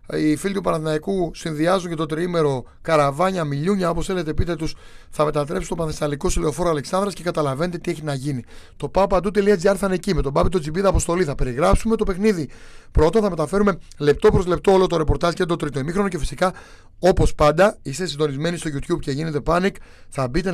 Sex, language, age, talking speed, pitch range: male, Greek, 30-49, 195 wpm, 150-195 Hz